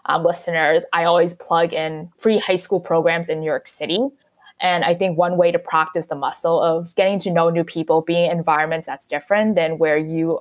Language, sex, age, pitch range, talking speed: English, female, 20-39, 165-220 Hz, 210 wpm